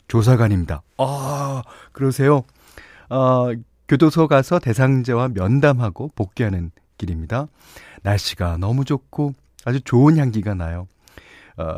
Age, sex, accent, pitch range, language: 40-59, male, native, 100-165 Hz, Korean